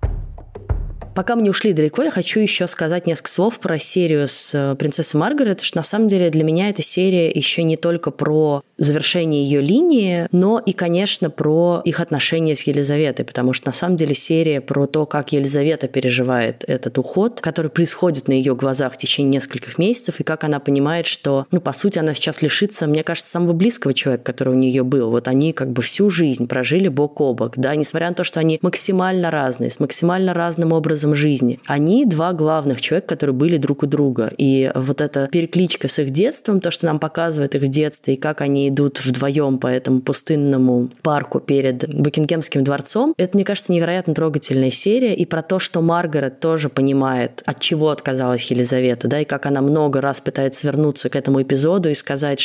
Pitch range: 135-170 Hz